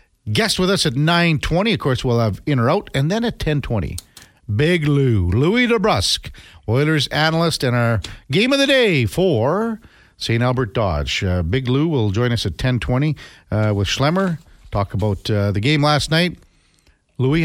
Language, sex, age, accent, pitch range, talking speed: English, male, 50-69, American, 105-150 Hz, 175 wpm